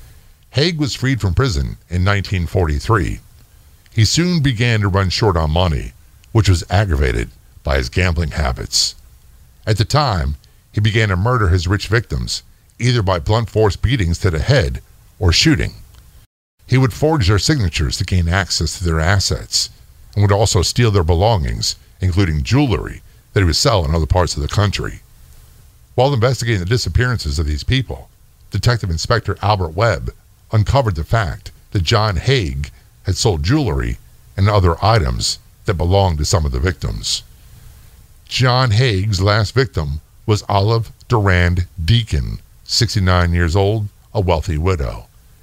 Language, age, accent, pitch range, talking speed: English, 50-69, American, 85-110 Hz, 150 wpm